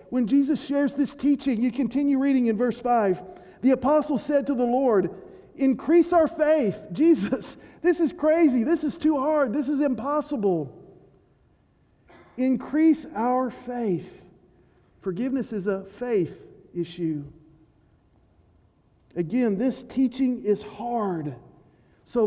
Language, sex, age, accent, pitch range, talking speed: English, male, 50-69, American, 210-275 Hz, 120 wpm